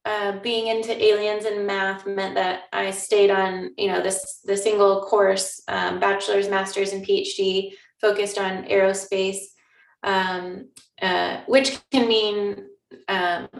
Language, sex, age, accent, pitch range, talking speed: English, female, 20-39, American, 185-210 Hz, 135 wpm